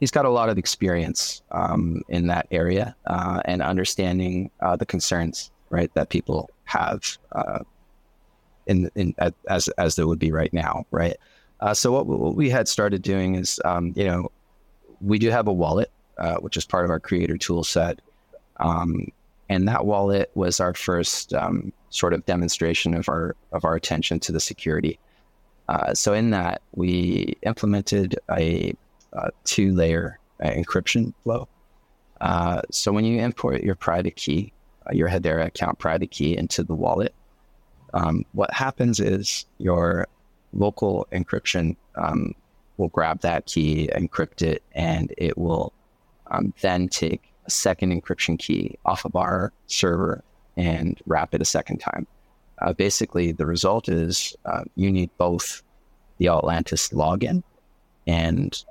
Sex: male